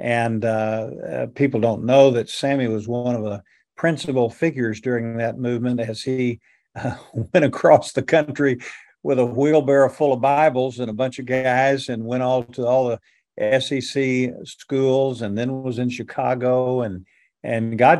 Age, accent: 50-69, American